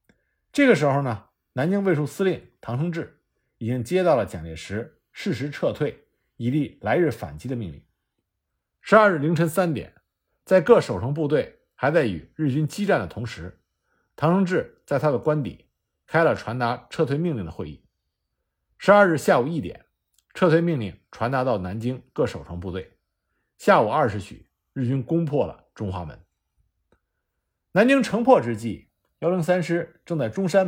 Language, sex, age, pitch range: Chinese, male, 50-69, 105-175 Hz